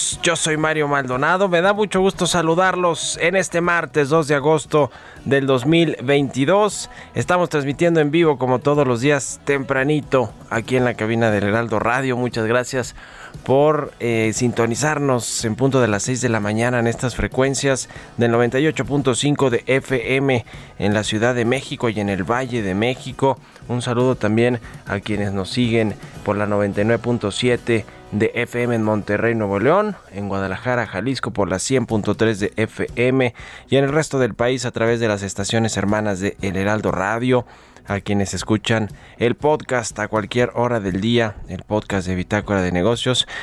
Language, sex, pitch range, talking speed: Spanish, male, 105-140 Hz, 165 wpm